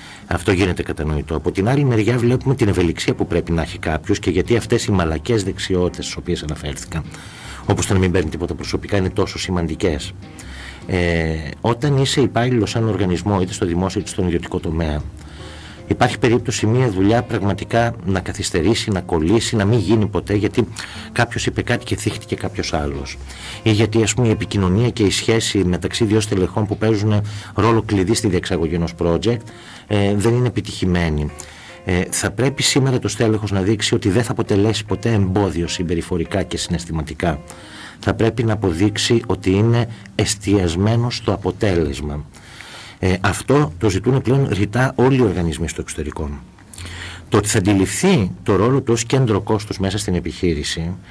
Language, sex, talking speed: Greek, male, 165 wpm